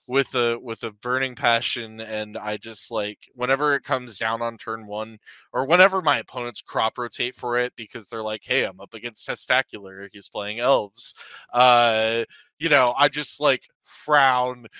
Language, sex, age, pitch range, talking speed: English, male, 20-39, 110-130 Hz, 175 wpm